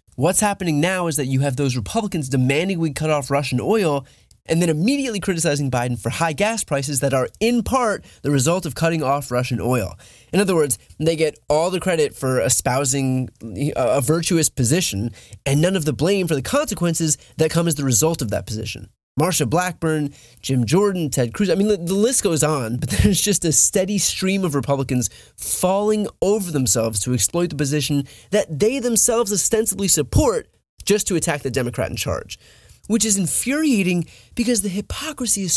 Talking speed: 185 wpm